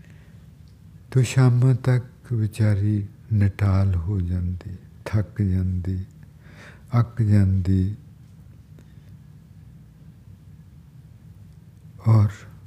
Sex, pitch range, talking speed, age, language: male, 95-125 Hz, 55 wpm, 60-79, English